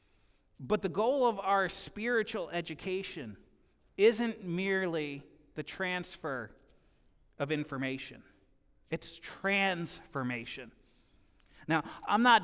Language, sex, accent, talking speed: English, male, American, 85 wpm